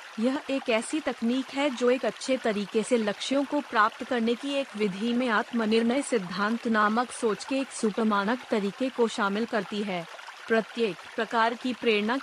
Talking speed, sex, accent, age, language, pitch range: 165 wpm, female, native, 30-49, Hindi, 210-250 Hz